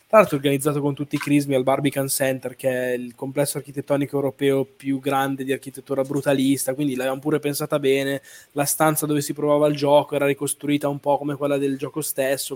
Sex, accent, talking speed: male, native, 195 wpm